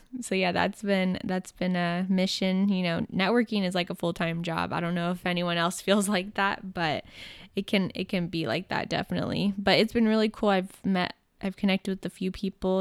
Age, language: 10-29, English